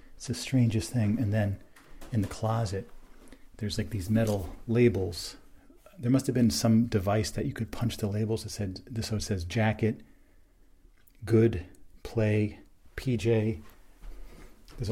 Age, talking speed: 40-59, 145 wpm